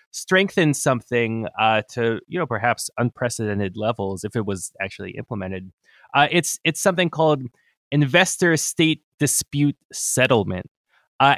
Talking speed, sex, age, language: 120 wpm, male, 20-39, English